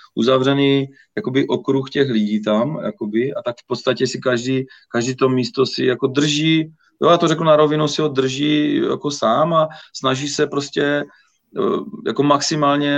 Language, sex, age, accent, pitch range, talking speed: Czech, male, 30-49, native, 120-140 Hz, 165 wpm